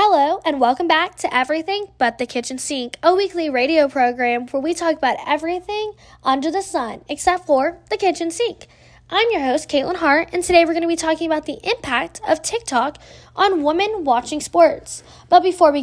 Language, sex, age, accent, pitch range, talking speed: English, female, 10-29, American, 260-345 Hz, 195 wpm